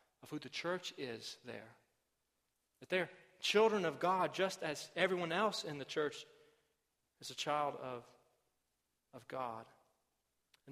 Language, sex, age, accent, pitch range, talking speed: English, male, 40-59, American, 140-180 Hz, 140 wpm